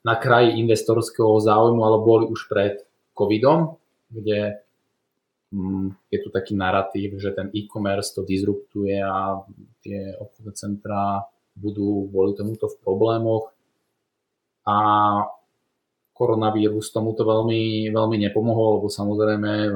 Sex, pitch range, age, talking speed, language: male, 100-110 Hz, 20-39, 110 wpm, Slovak